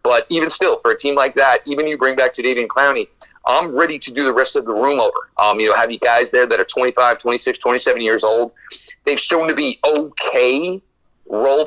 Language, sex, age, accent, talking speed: English, male, 40-59, American, 225 wpm